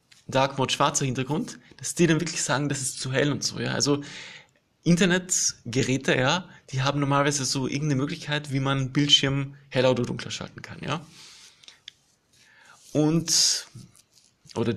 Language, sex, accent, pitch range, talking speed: German, male, German, 130-155 Hz, 145 wpm